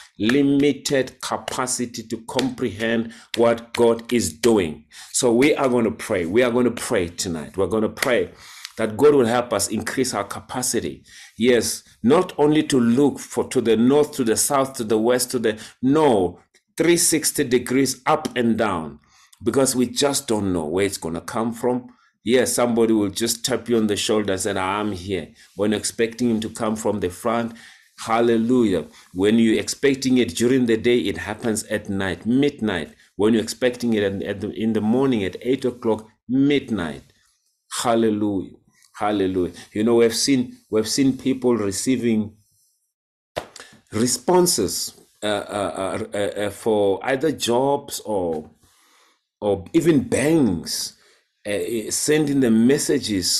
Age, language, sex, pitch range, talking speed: 40-59, English, male, 110-130 Hz, 155 wpm